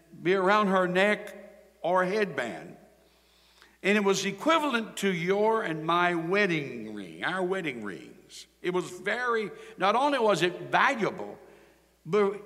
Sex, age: male, 60-79